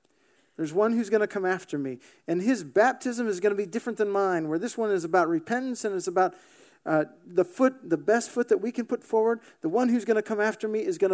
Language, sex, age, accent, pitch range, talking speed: English, male, 40-59, American, 165-235 Hz, 260 wpm